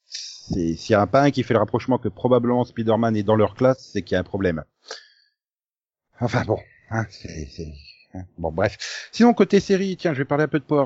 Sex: male